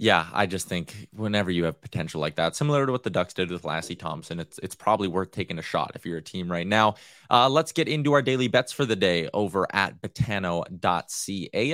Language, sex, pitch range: English, male, 100-145 Hz